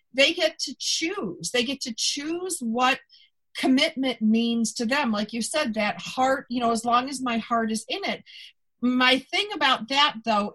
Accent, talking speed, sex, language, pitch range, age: American, 190 wpm, female, English, 220-280 Hz, 50-69